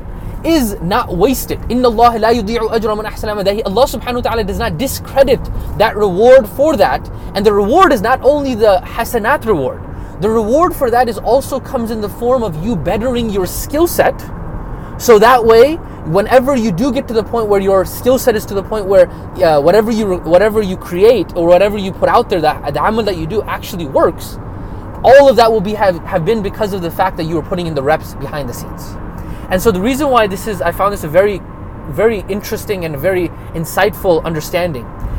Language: English